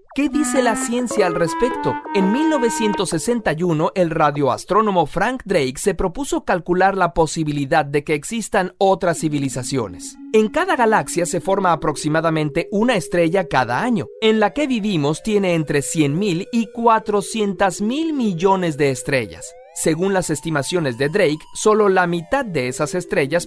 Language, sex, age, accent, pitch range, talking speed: Spanish, male, 40-59, Mexican, 155-220 Hz, 140 wpm